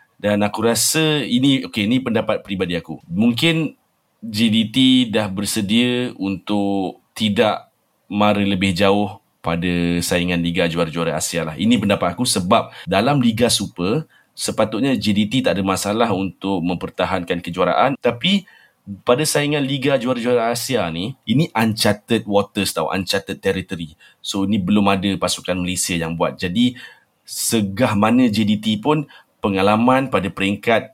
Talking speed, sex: 130 wpm, male